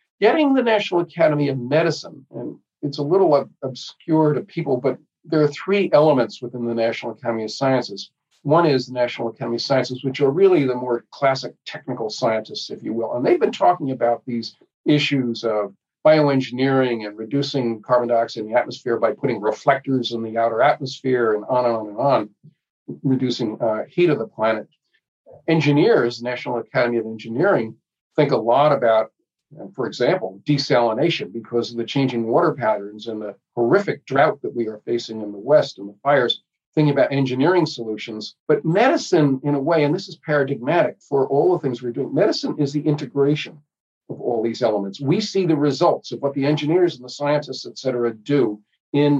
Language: English